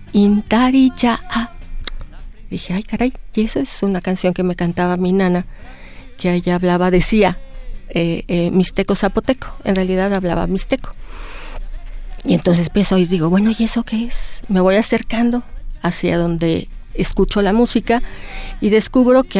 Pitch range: 180-240 Hz